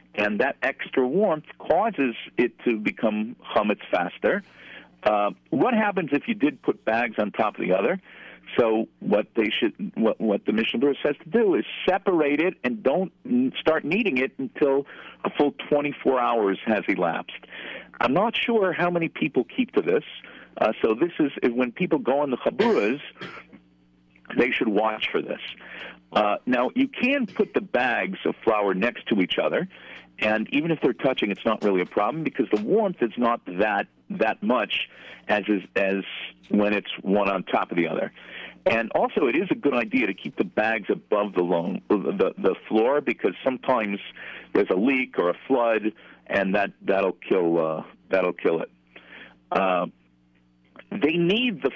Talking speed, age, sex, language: 180 wpm, 50-69, male, English